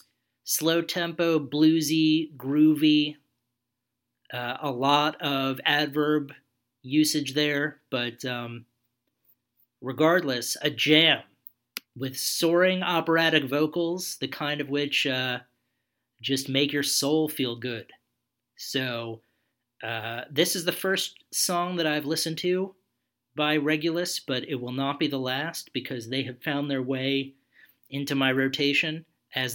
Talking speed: 125 wpm